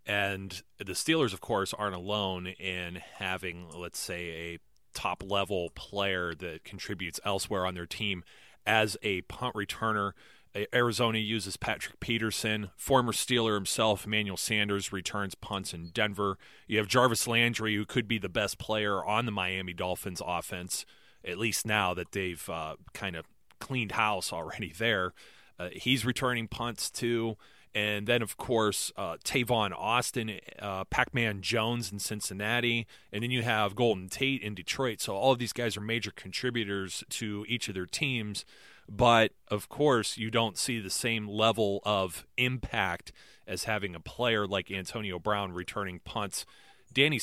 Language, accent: English, American